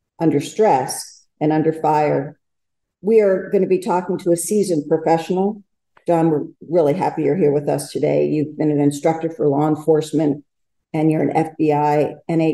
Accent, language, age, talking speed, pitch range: American, English, 50-69, 170 wpm, 150-180 Hz